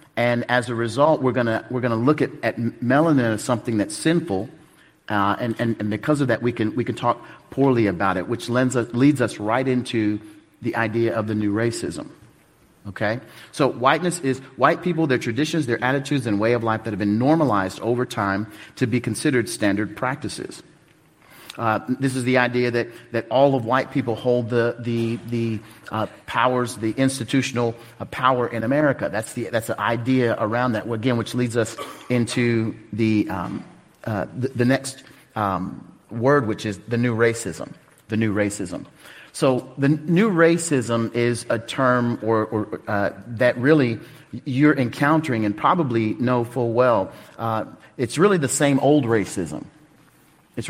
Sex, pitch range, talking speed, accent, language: male, 115-135 Hz, 175 wpm, American, English